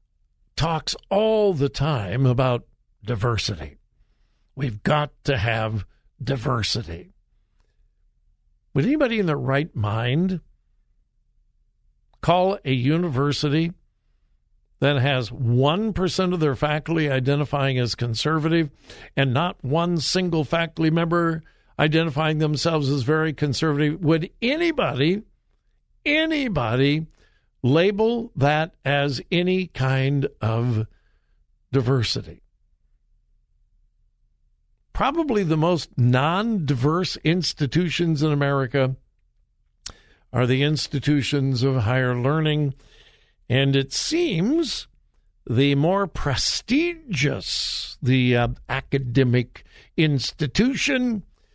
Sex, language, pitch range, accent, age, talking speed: male, English, 125-165 Hz, American, 60-79, 85 wpm